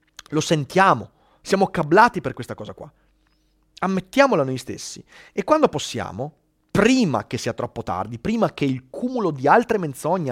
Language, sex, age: Italian, male, 30-49